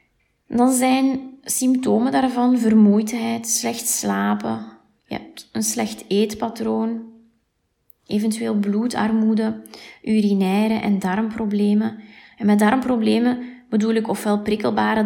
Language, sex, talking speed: Dutch, female, 90 wpm